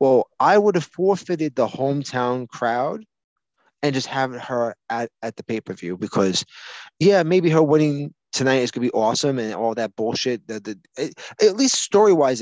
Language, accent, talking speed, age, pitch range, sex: English, American, 175 wpm, 20-39, 115-155 Hz, male